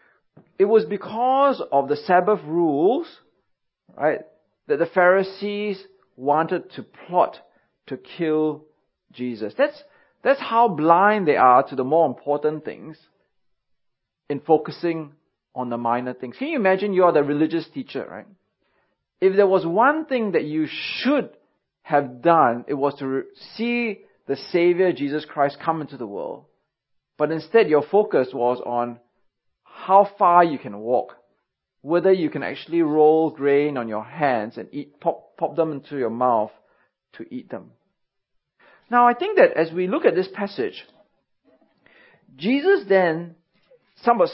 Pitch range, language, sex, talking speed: 145-210 Hz, English, male, 150 wpm